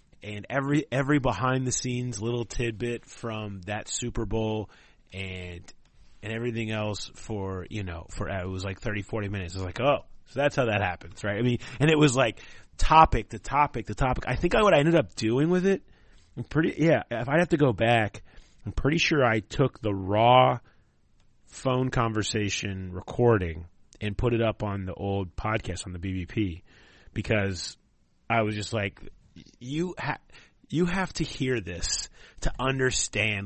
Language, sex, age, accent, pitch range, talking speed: English, male, 30-49, American, 100-135 Hz, 185 wpm